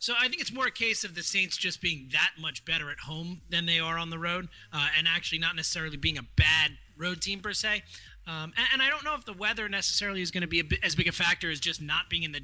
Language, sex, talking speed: English, male, 295 wpm